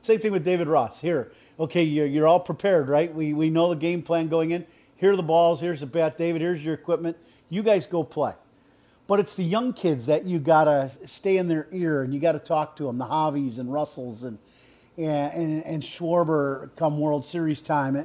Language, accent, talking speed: English, American, 225 wpm